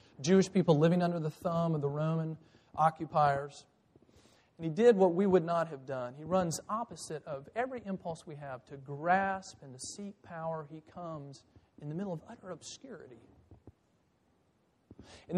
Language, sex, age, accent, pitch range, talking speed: English, male, 40-59, American, 140-185 Hz, 165 wpm